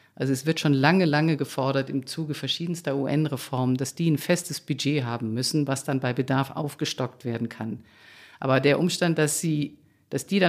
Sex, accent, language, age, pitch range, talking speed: female, German, German, 50-69, 135-165 Hz, 190 wpm